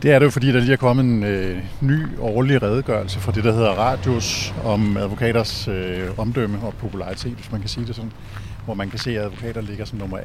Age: 50-69